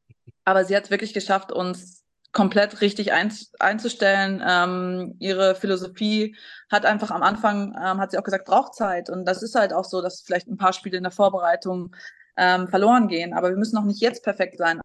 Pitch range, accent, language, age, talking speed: 175-200 Hz, German, German, 20-39, 195 wpm